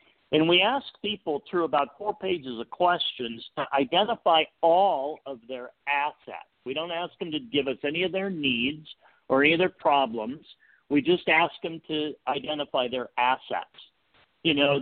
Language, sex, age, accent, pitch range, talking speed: English, male, 50-69, American, 130-180 Hz, 170 wpm